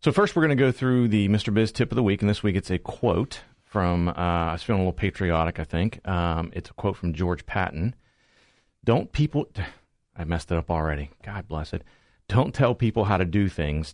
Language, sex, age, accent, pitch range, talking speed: English, male, 40-59, American, 80-95 Hz, 230 wpm